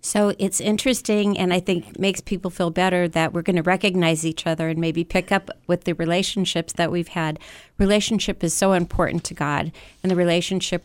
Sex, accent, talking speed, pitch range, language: female, American, 200 wpm, 165-195 Hz, English